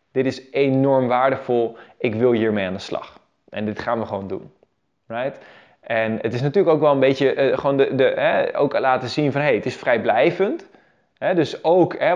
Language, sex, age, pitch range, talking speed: Dutch, male, 20-39, 135-180 Hz, 210 wpm